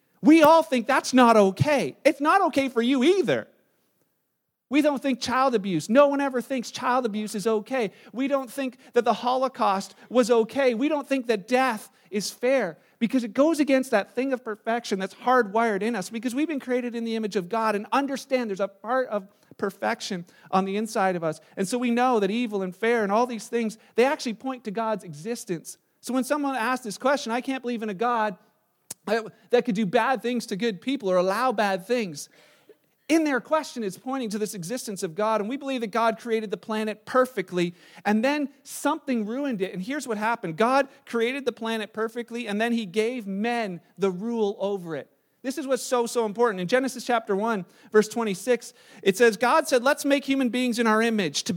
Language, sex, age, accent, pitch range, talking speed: English, male, 40-59, American, 210-260 Hz, 210 wpm